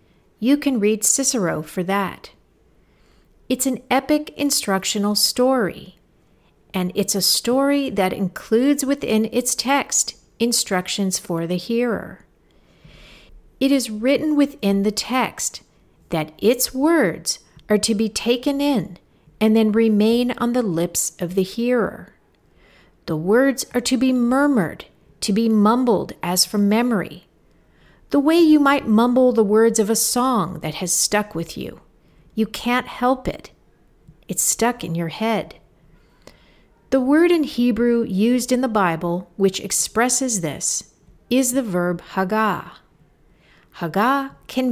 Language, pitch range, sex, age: English, 195-255 Hz, female, 50-69